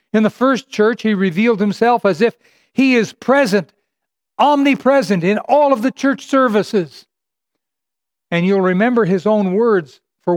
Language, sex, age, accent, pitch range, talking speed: English, male, 60-79, American, 185-235 Hz, 150 wpm